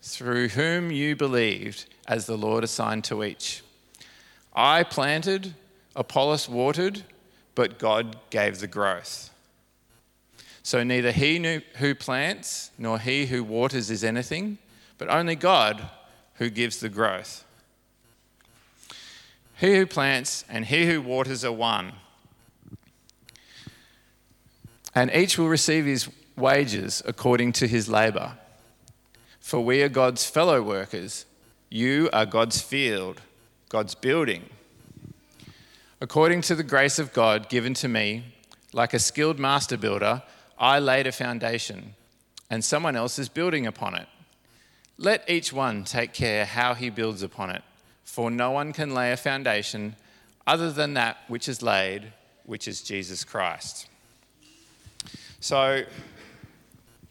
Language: English